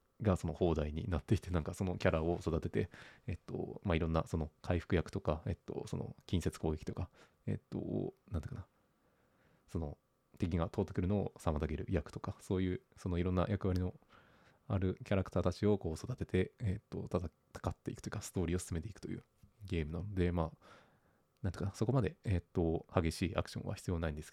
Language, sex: Japanese, male